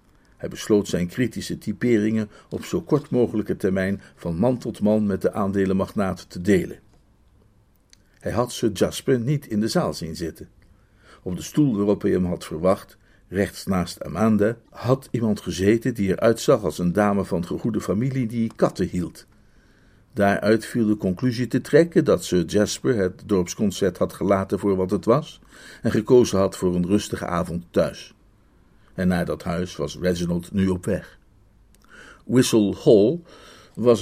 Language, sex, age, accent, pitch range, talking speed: Dutch, male, 50-69, Dutch, 95-115 Hz, 160 wpm